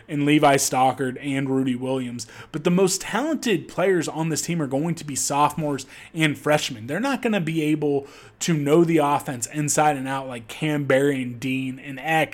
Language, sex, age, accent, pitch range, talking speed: English, male, 20-39, American, 135-155 Hz, 200 wpm